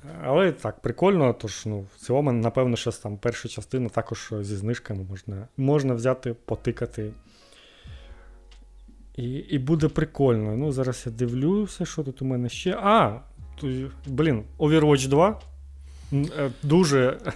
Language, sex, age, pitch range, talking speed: Ukrainian, male, 30-49, 115-135 Hz, 125 wpm